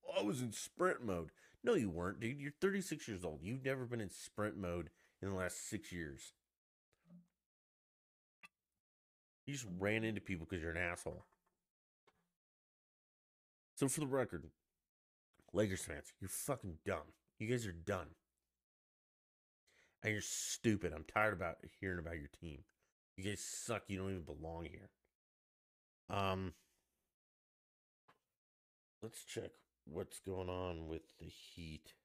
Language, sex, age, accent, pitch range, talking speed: English, male, 30-49, American, 80-110 Hz, 135 wpm